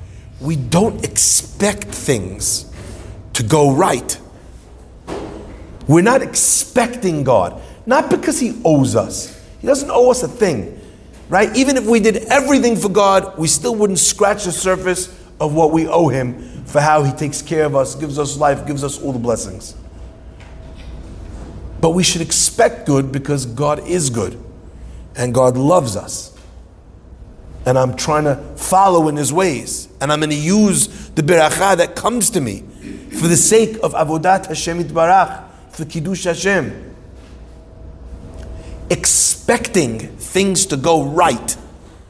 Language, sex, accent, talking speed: English, male, American, 145 wpm